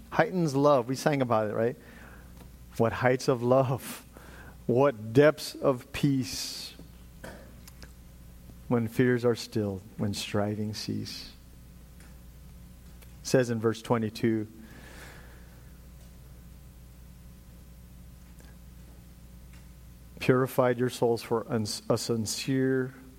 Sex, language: male, English